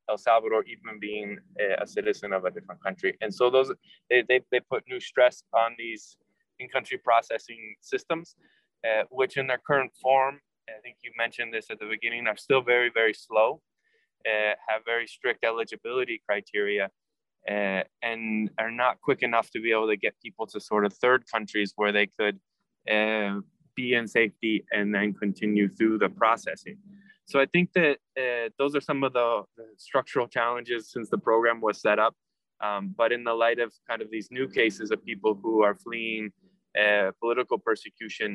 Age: 20-39